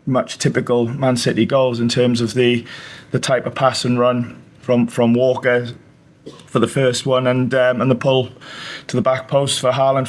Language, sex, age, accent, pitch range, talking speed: English, male, 20-39, British, 125-140 Hz, 195 wpm